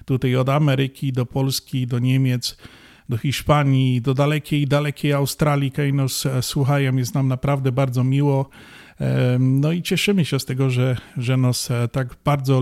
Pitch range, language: 125-145 Hz, Polish